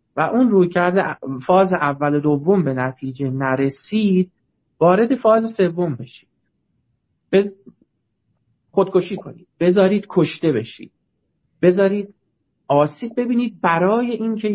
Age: 50-69